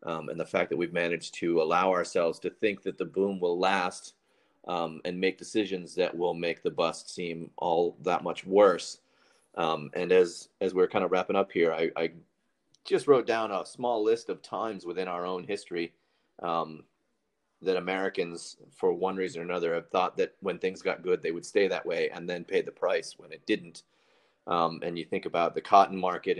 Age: 30-49